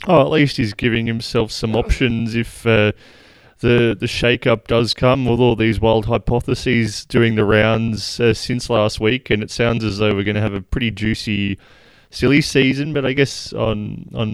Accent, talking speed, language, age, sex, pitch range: Australian, 195 wpm, English, 20-39, male, 105-120 Hz